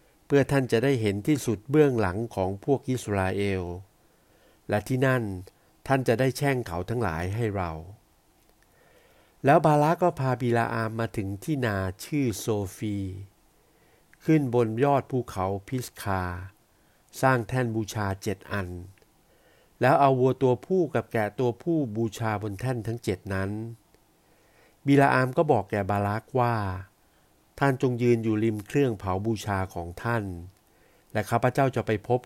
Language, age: Thai, 60-79